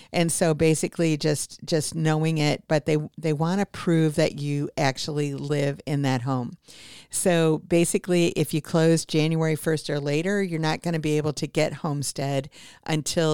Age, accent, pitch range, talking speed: 50-69, American, 145-160 Hz, 175 wpm